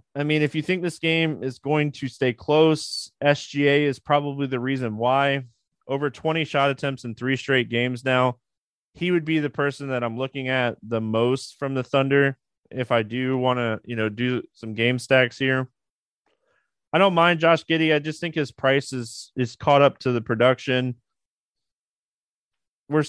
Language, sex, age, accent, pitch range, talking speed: English, male, 30-49, American, 125-150 Hz, 185 wpm